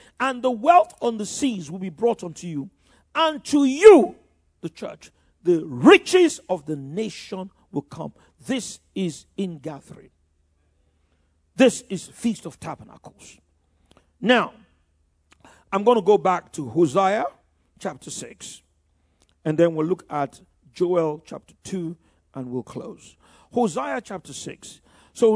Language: English